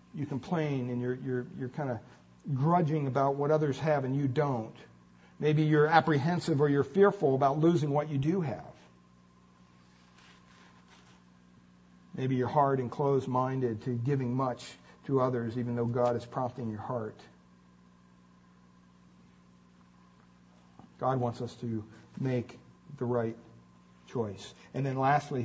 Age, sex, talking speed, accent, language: 50-69, male, 130 wpm, American, English